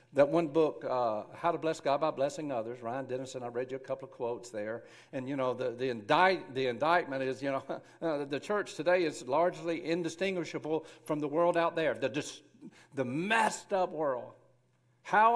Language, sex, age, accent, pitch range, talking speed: English, male, 60-79, American, 130-170 Hz, 195 wpm